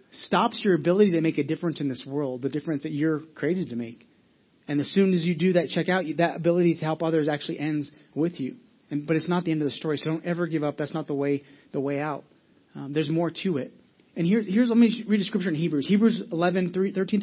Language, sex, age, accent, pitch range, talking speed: English, male, 30-49, American, 155-195 Hz, 265 wpm